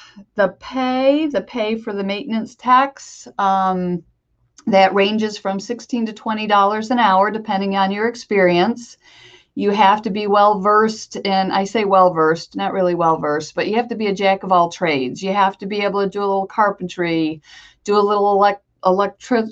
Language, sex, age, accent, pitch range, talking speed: English, female, 50-69, American, 185-220 Hz, 165 wpm